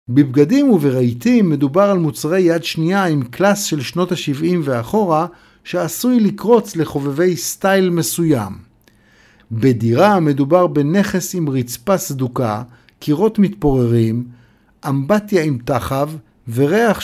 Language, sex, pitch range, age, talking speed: Hebrew, male, 130-190 Hz, 50-69, 105 wpm